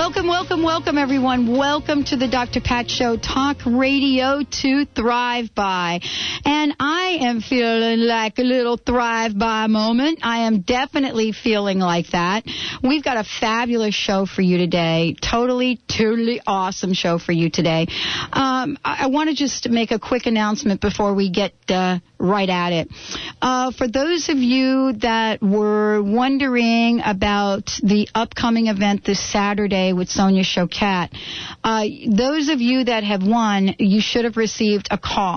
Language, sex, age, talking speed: English, female, 50-69, 155 wpm